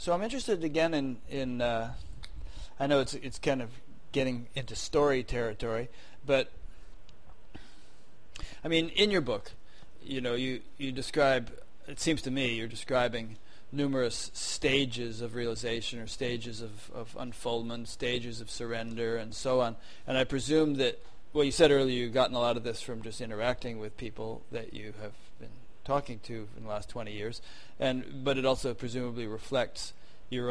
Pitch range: 115-135 Hz